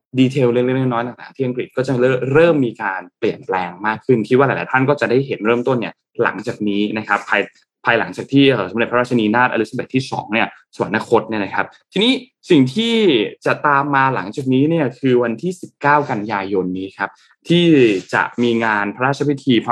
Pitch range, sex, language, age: 110-140 Hz, male, Thai, 20-39